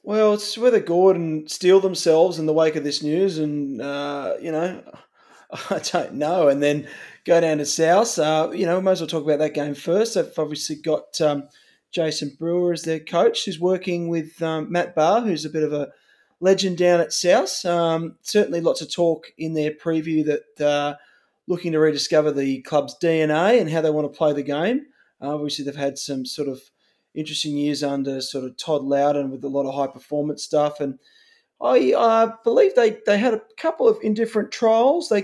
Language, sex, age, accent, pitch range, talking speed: English, male, 20-39, Australian, 145-185 Hz, 205 wpm